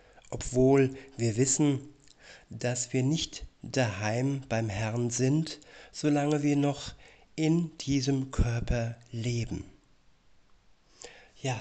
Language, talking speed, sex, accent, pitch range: German, 95 wpm, male, German, 120-135 Hz